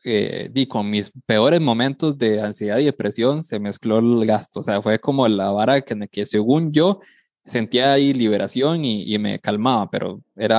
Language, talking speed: Spanish, 195 wpm